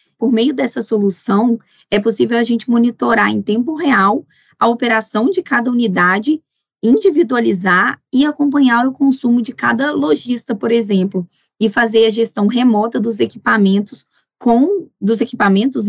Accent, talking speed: Brazilian, 140 wpm